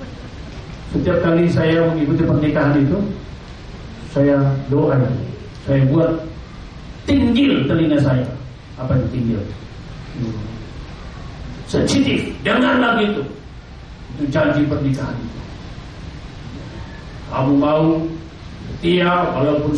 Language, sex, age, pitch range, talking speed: Indonesian, male, 50-69, 130-180 Hz, 80 wpm